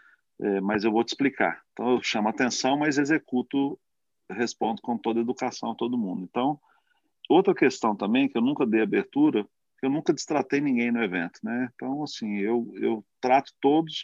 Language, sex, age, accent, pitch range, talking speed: Portuguese, male, 40-59, Brazilian, 115-145 Hz, 185 wpm